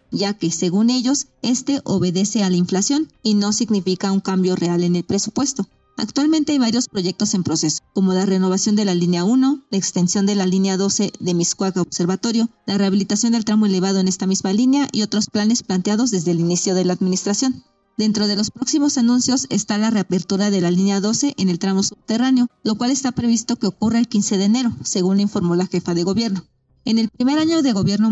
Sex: female